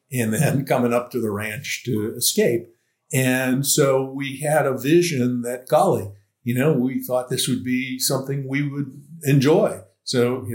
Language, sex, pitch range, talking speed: English, male, 105-130 Hz, 170 wpm